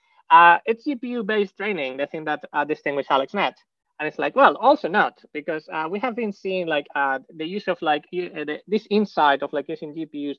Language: English